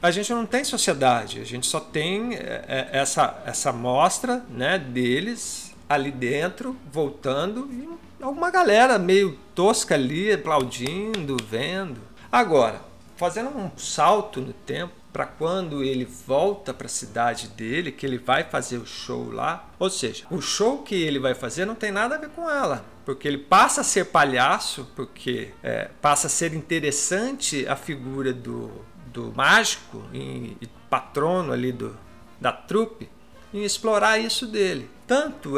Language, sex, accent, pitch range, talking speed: Portuguese, male, Brazilian, 135-205 Hz, 150 wpm